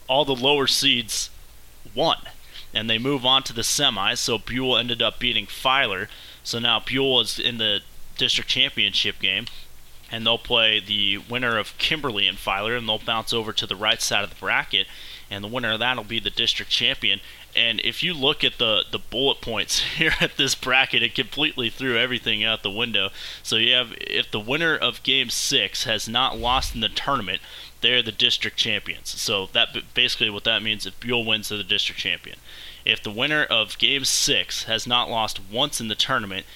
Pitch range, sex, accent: 100-125 Hz, male, American